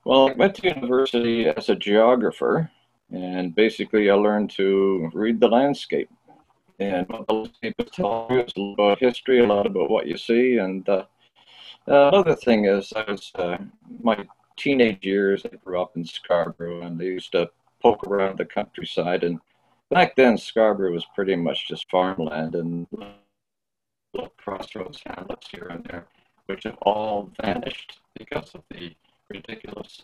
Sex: male